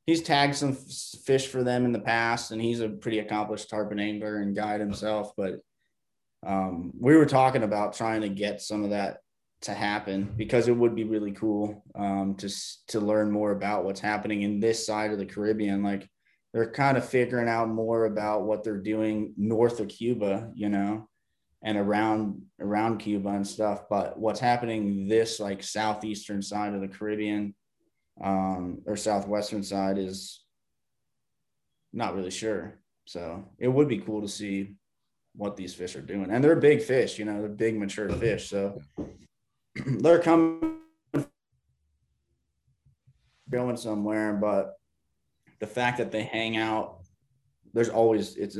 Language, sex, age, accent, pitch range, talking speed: English, male, 20-39, American, 100-115 Hz, 160 wpm